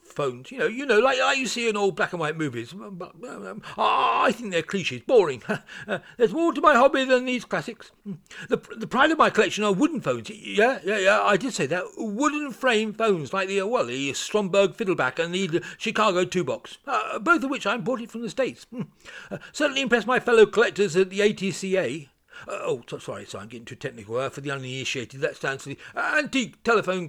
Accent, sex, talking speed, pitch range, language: British, male, 215 wpm, 155-230 Hz, English